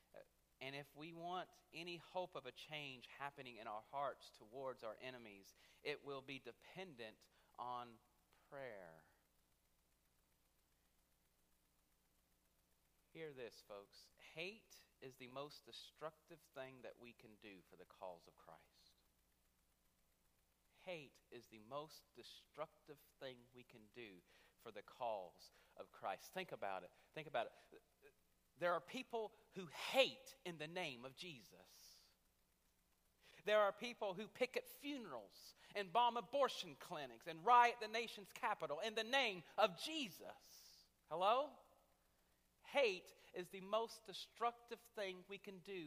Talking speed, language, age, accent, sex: 130 wpm, English, 40-59, American, male